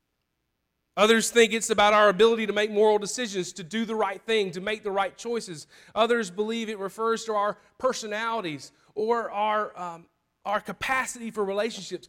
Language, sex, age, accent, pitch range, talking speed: English, male, 40-59, American, 175-220 Hz, 170 wpm